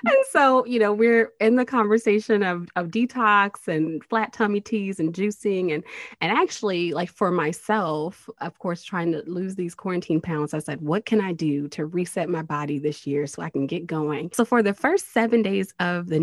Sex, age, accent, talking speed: female, 20-39, American, 205 wpm